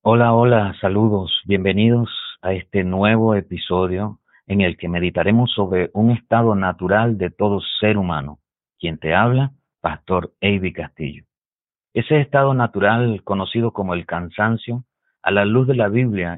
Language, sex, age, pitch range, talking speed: Spanish, male, 50-69, 90-120 Hz, 145 wpm